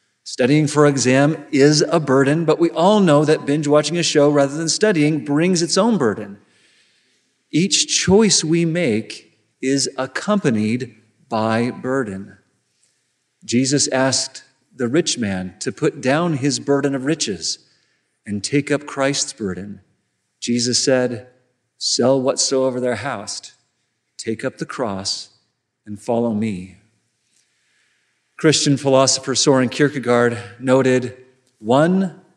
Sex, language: male, English